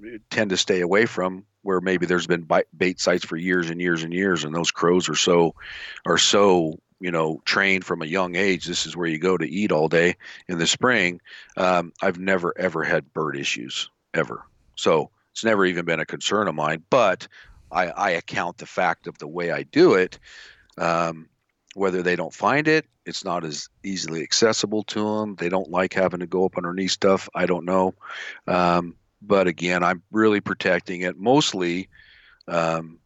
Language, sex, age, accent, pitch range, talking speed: English, male, 50-69, American, 80-95 Hz, 195 wpm